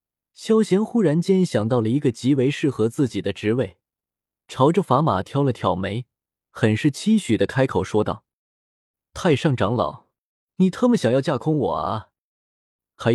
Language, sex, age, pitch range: Chinese, male, 20-39, 105-155 Hz